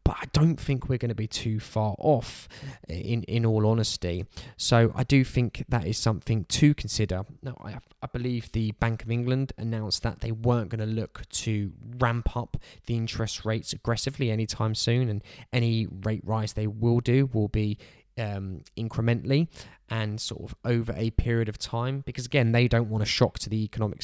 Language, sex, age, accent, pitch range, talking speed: English, male, 10-29, British, 105-120 Hz, 190 wpm